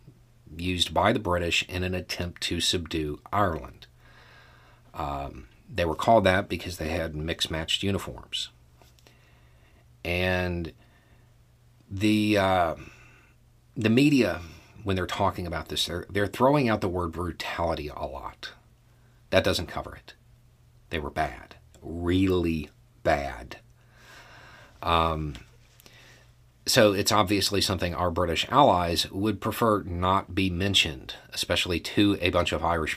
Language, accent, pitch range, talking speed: English, American, 85-115 Hz, 125 wpm